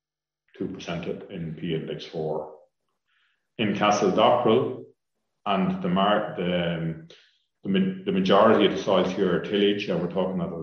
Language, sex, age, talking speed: English, male, 40-59, 135 wpm